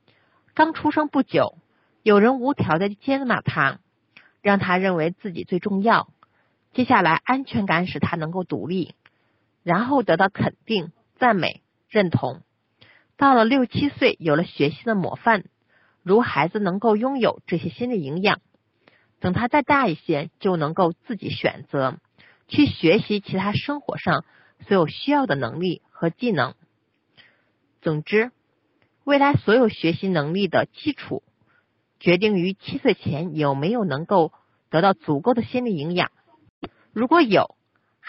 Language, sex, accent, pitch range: Chinese, female, native, 165-230 Hz